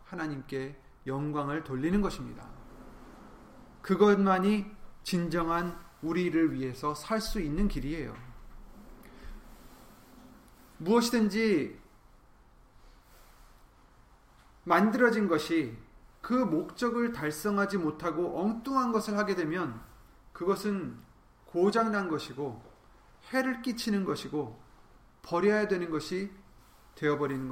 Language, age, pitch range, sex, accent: Korean, 30-49, 145-215 Hz, male, native